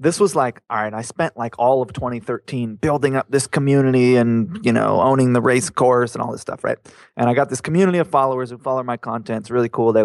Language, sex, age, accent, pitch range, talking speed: English, male, 20-39, American, 115-155 Hz, 250 wpm